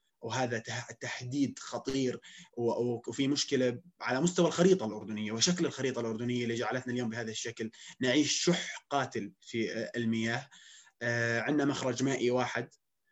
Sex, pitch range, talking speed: male, 120-140 Hz, 125 wpm